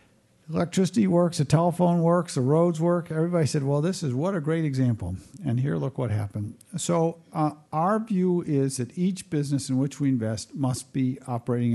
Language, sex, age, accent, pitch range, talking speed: English, male, 50-69, American, 115-165 Hz, 190 wpm